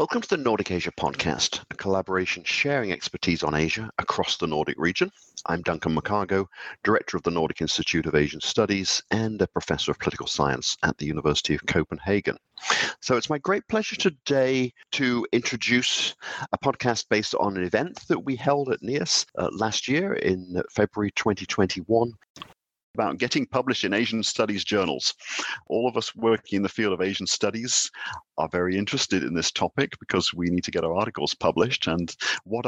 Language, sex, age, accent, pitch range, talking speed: English, male, 50-69, British, 90-115 Hz, 175 wpm